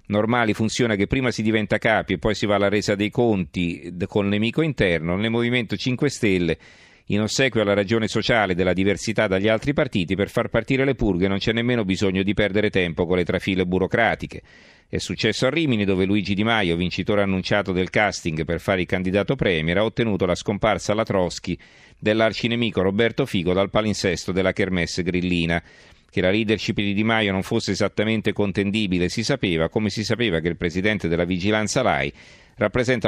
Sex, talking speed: male, 185 wpm